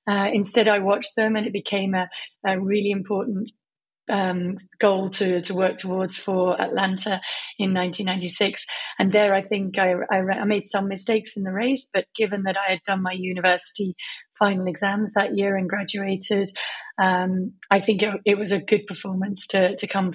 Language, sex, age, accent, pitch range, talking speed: French, female, 30-49, British, 190-210 Hz, 180 wpm